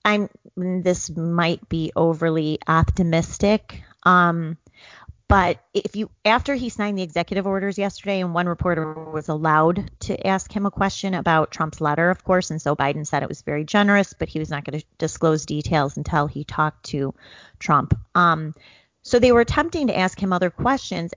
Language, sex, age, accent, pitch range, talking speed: English, female, 30-49, American, 160-200 Hz, 180 wpm